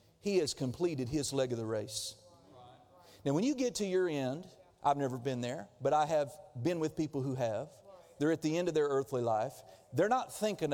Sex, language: male, English